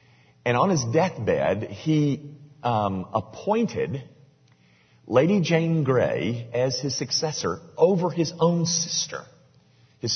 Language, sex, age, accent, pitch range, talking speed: English, male, 40-59, American, 90-145 Hz, 105 wpm